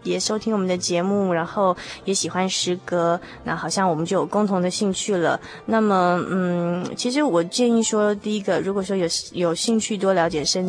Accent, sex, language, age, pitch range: native, female, Chinese, 20-39, 170-195 Hz